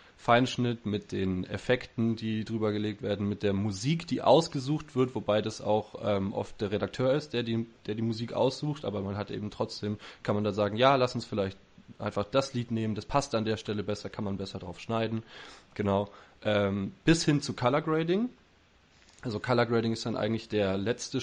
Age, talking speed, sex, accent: 20-39, 200 wpm, male, German